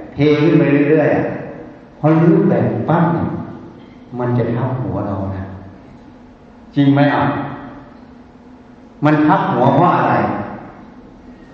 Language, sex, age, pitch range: Thai, male, 60-79, 120-165 Hz